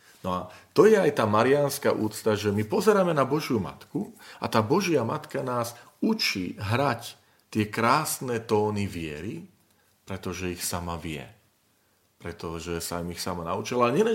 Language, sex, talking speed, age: Slovak, male, 155 wpm, 40-59